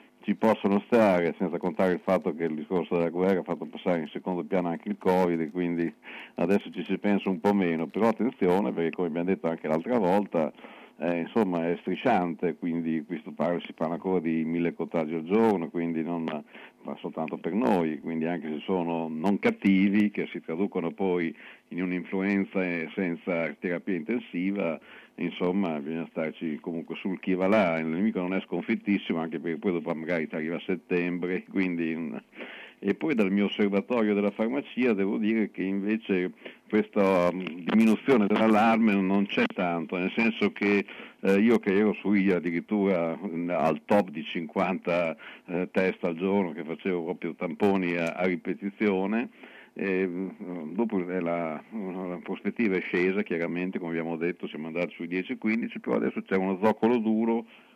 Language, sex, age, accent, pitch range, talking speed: Italian, male, 50-69, native, 85-100 Hz, 165 wpm